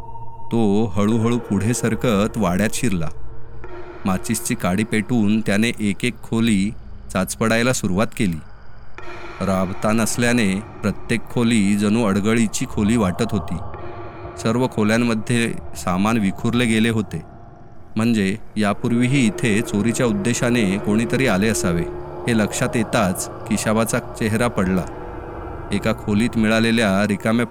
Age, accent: 30-49, native